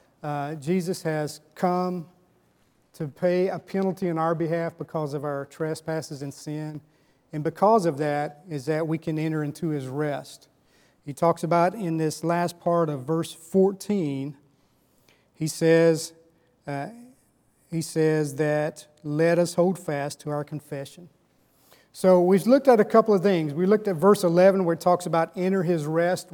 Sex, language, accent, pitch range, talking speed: male, English, American, 155-190 Hz, 160 wpm